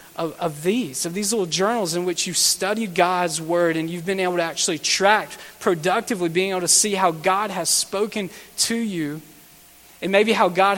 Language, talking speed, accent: English, 195 wpm, American